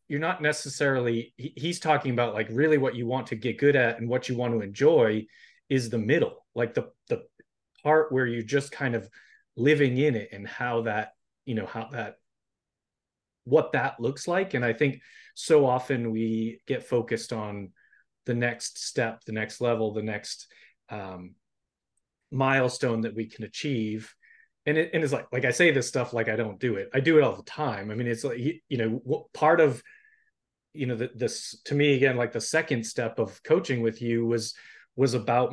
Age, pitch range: 30-49, 115-150 Hz